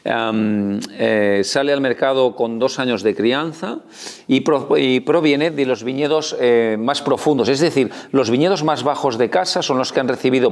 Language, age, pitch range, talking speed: Spanish, 40-59, 110-135 Hz, 190 wpm